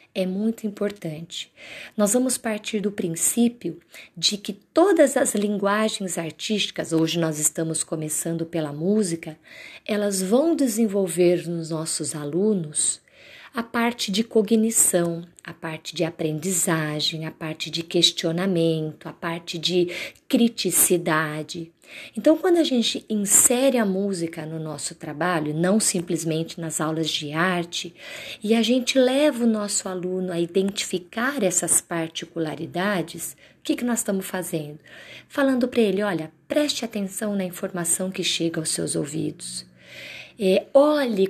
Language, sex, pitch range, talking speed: Portuguese, female, 165-220 Hz, 130 wpm